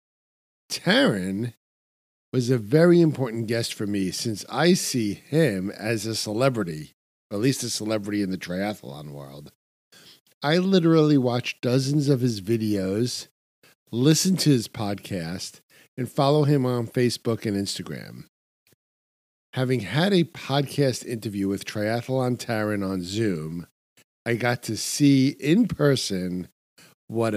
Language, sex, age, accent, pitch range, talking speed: English, male, 50-69, American, 100-135 Hz, 130 wpm